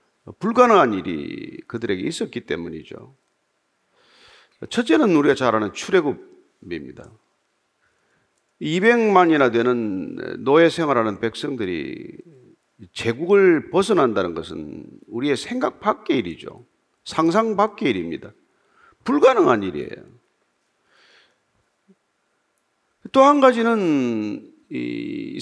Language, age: Korean, 40-59